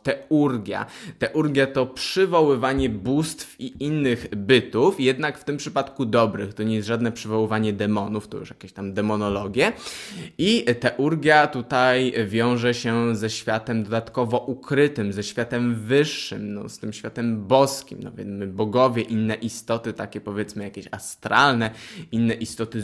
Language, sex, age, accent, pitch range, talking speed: Polish, male, 20-39, native, 105-125 Hz, 135 wpm